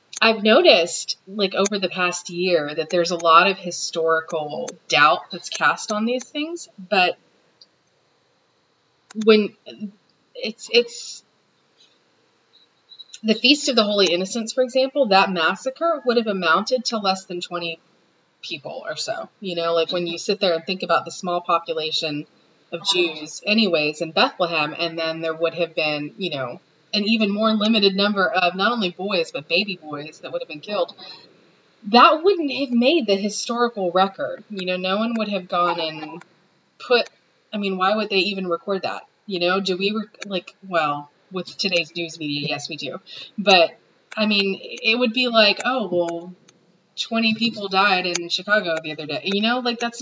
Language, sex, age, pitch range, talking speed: English, female, 30-49, 170-215 Hz, 175 wpm